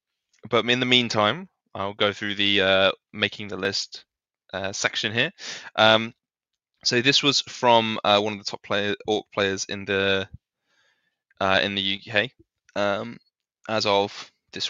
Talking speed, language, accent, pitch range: 155 wpm, English, British, 95-120 Hz